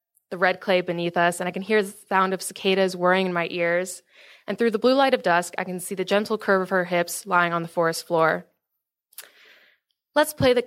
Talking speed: 230 wpm